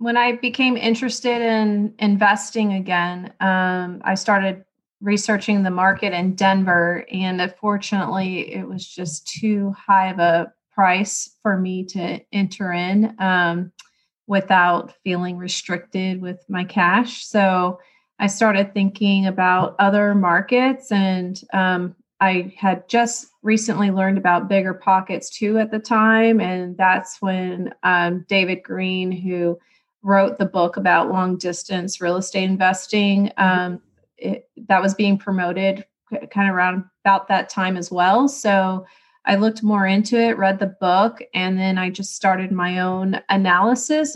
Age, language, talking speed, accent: 30-49, English, 140 wpm, American